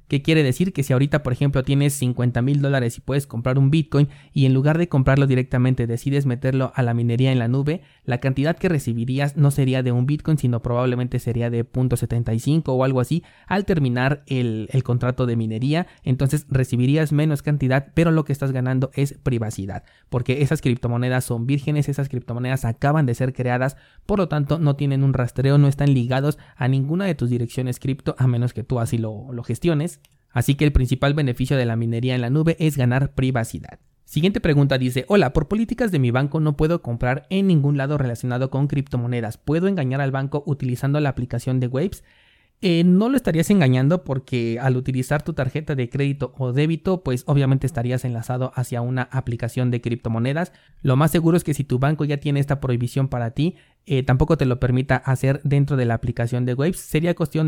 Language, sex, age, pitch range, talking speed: Spanish, male, 20-39, 125-150 Hz, 200 wpm